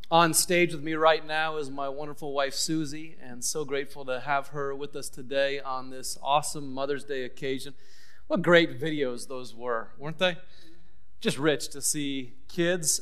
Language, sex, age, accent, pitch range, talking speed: English, male, 30-49, American, 135-170 Hz, 175 wpm